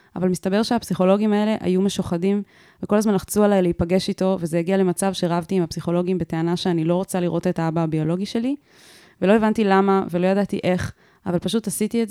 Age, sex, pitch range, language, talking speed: 20-39, female, 170-195 Hz, Hebrew, 185 wpm